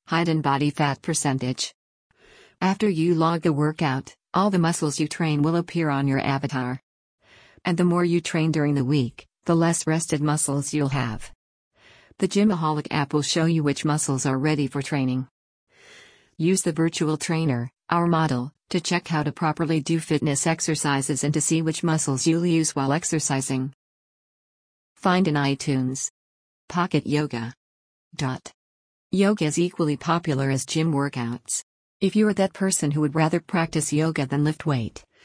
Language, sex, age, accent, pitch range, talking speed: English, female, 50-69, American, 140-165 Hz, 160 wpm